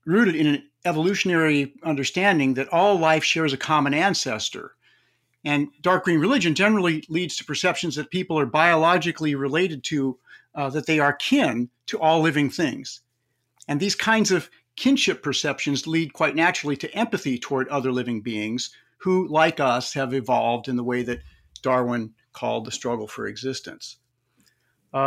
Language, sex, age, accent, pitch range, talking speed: English, male, 50-69, American, 135-170 Hz, 155 wpm